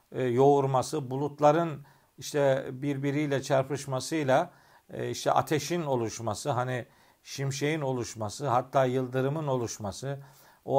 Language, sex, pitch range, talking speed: Turkish, male, 135-165 Hz, 85 wpm